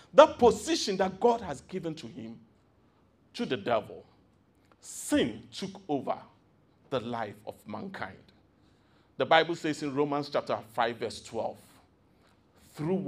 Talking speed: 130 wpm